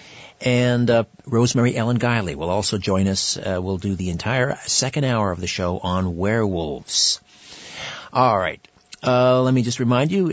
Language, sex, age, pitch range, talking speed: English, male, 50-69, 105-135 Hz, 165 wpm